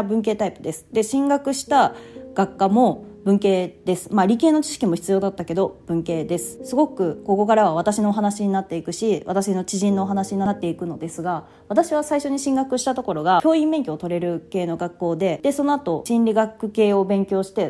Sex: female